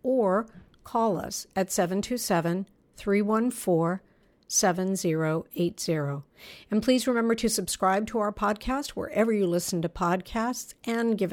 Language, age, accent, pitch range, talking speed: English, 50-69, American, 175-215 Hz, 105 wpm